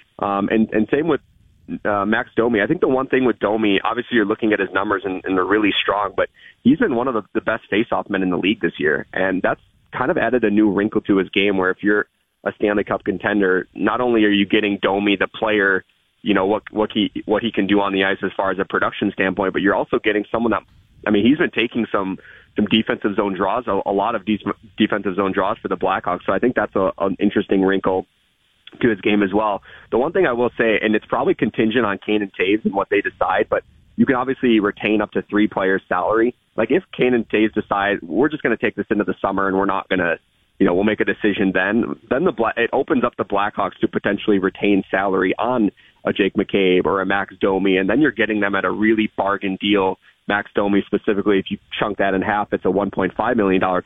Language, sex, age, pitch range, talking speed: English, male, 30-49, 95-105 Hz, 250 wpm